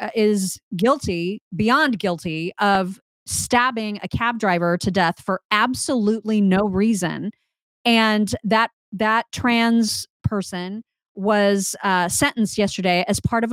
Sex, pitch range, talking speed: female, 195-235 Hz, 120 wpm